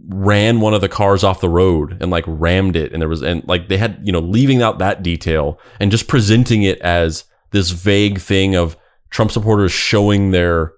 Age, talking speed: 20-39, 210 wpm